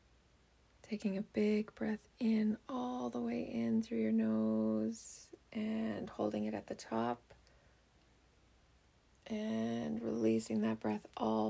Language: English